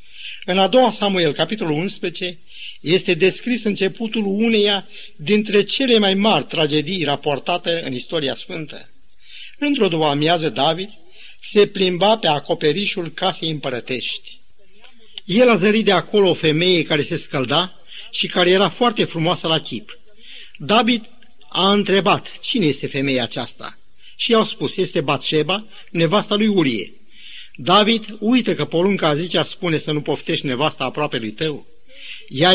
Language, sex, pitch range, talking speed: Romanian, male, 155-205 Hz, 140 wpm